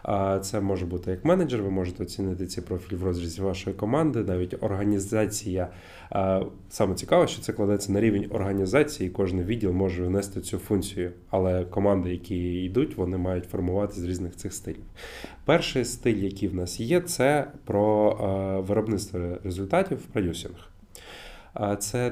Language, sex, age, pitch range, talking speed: Ukrainian, male, 20-39, 95-110 Hz, 150 wpm